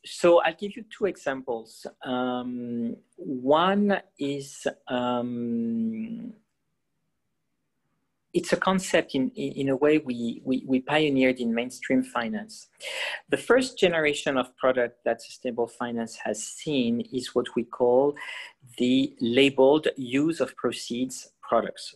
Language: English